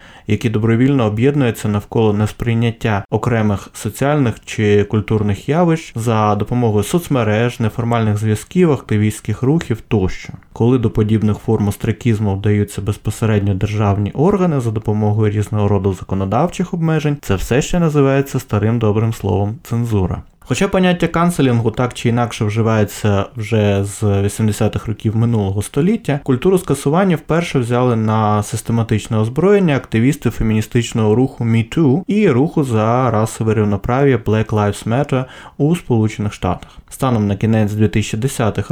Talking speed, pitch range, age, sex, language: 125 wpm, 105-135 Hz, 20-39, male, Ukrainian